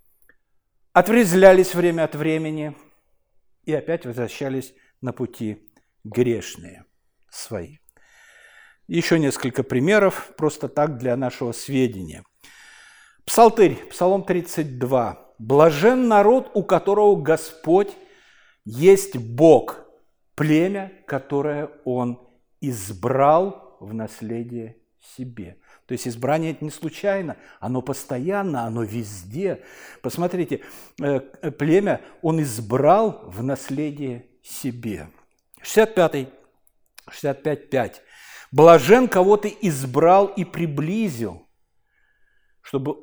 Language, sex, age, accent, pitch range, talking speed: Russian, male, 60-79, native, 125-185 Hz, 90 wpm